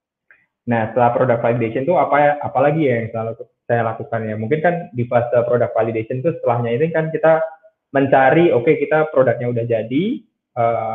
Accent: native